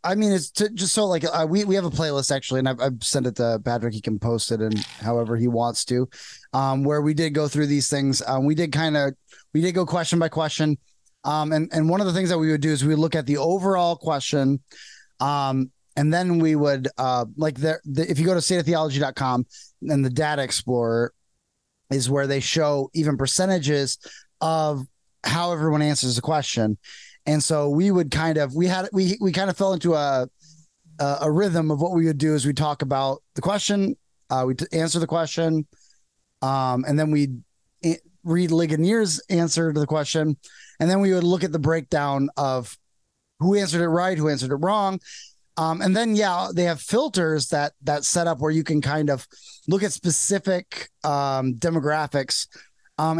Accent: American